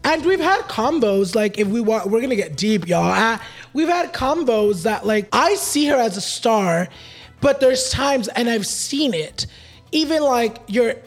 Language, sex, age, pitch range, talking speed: English, male, 20-39, 220-280 Hz, 190 wpm